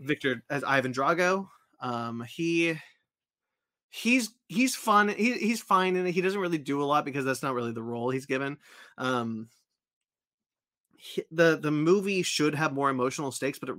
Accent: American